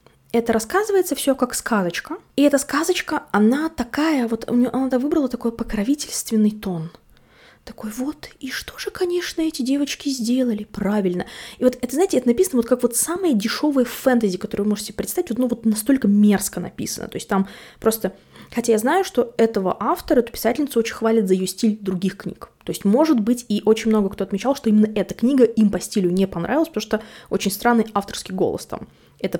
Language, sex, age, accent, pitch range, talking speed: Russian, female, 20-39, native, 200-260 Hz, 190 wpm